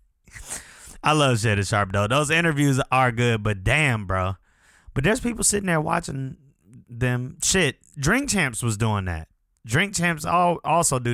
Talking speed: 155 wpm